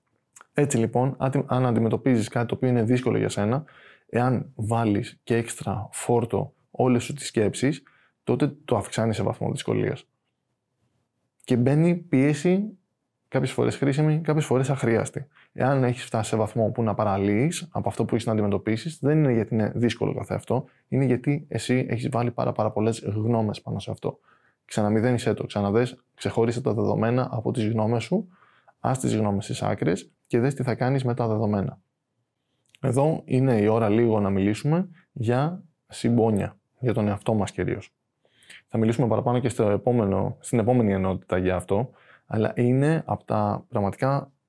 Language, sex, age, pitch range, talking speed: Greek, male, 20-39, 105-130 Hz, 165 wpm